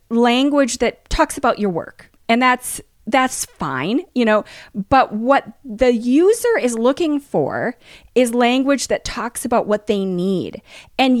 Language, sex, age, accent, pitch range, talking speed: English, female, 30-49, American, 205-255 Hz, 150 wpm